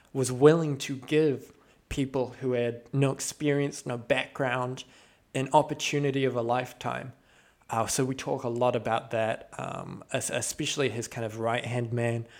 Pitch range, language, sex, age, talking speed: 120-140 Hz, English, male, 20-39, 150 wpm